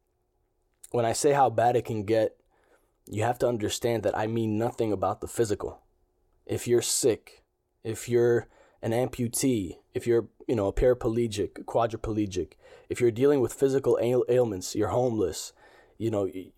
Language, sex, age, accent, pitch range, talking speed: English, male, 20-39, American, 110-130 Hz, 155 wpm